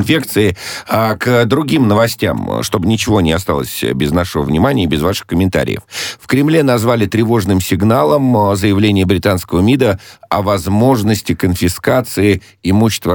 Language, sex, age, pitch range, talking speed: Russian, male, 50-69, 75-110 Hz, 130 wpm